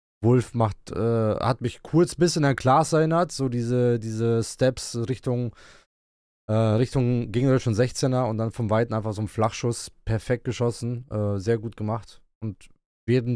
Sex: male